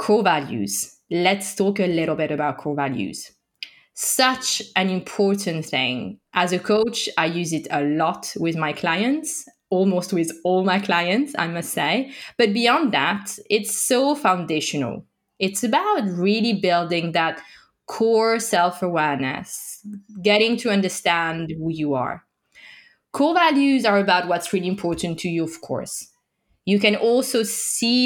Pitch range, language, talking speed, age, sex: 170-240 Hz, English, 145 wpm, 20-39, female